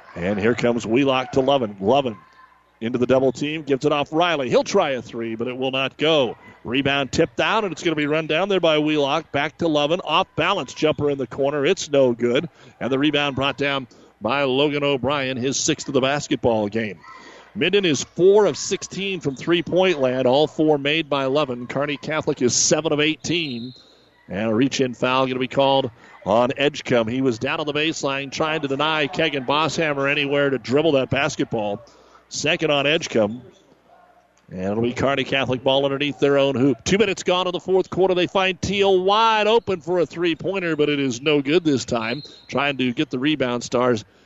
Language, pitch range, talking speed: English, 130-160 Hz, 205 wpm